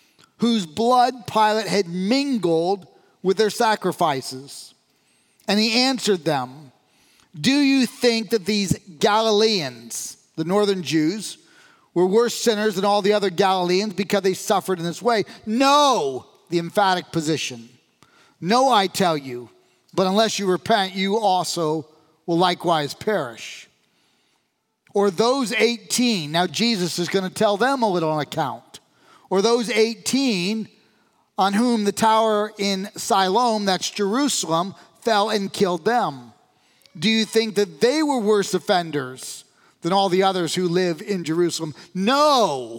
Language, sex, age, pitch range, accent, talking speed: English, male, 40-59, 165-220 Hz, American, 135 wpm